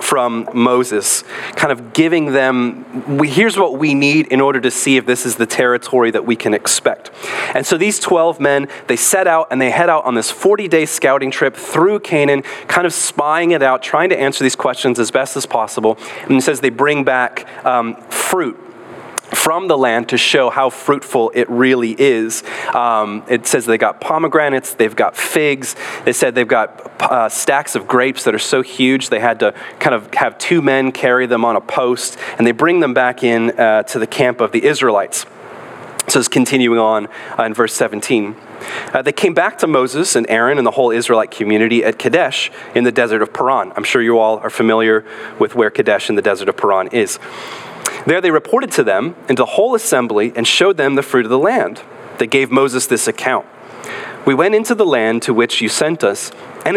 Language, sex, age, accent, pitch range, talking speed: English, male, 30-49, American, 120-150 Hz, 210 wpm